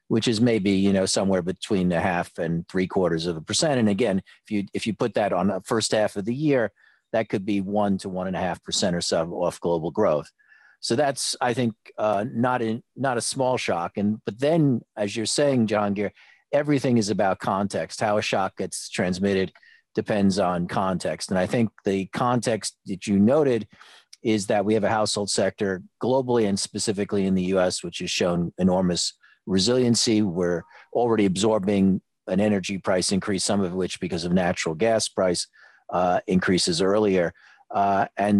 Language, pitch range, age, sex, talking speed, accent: English, 90-110 Hz, 40-59, male, 190 wpm, American